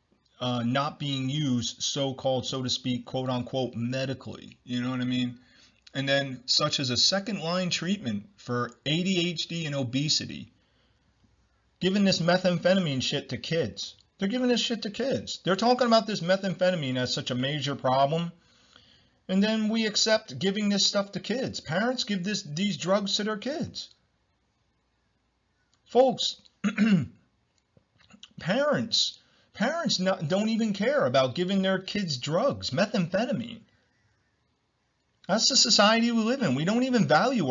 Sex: male